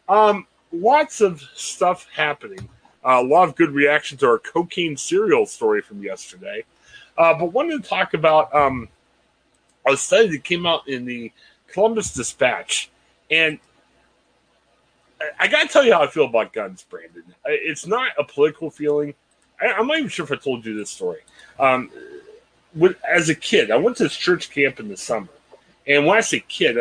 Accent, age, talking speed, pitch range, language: American, 30-49, 180 wpm, 135-210 Hz, English